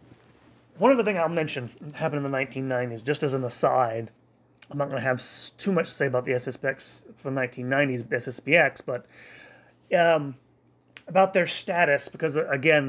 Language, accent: English, American